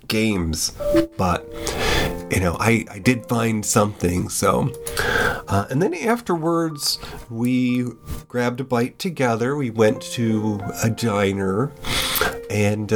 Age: 30-49